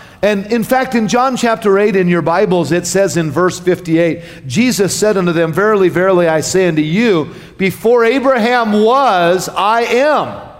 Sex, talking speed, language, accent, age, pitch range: male, 170 wpm, English, American, 40-59, 160-205 Hz